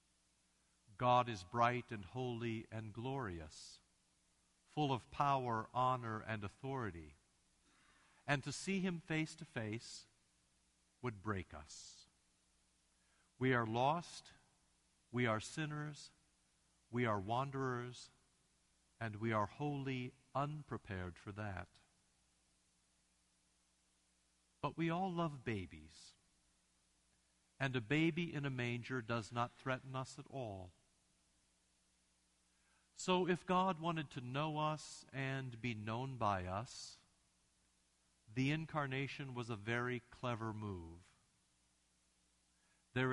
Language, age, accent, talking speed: English, 50-69, American, 105 wpm